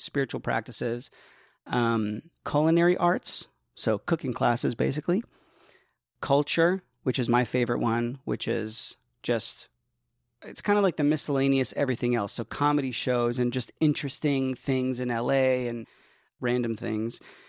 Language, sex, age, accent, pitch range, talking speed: English, male, 30-49, American, 110-135 Hz, 130 wpm